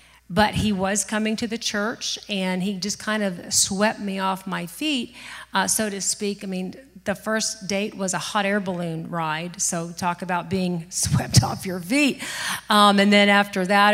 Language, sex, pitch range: English, female, 180-215 Hz